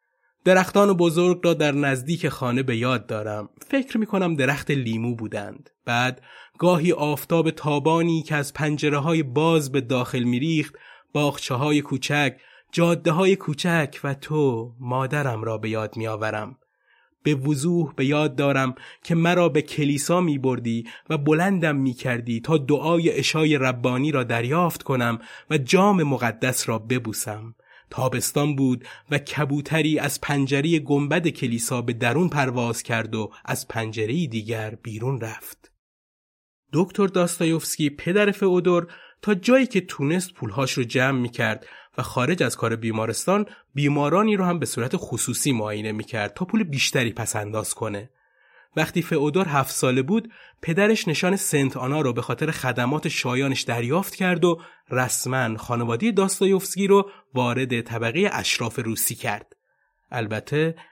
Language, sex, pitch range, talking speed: Persian, male, 120-170 Hz, 145 wpm